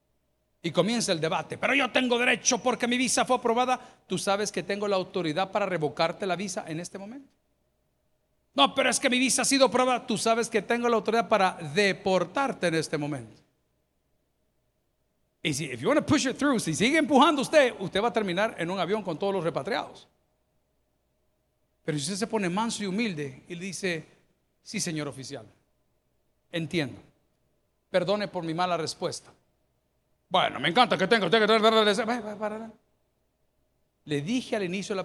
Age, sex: 50-69, male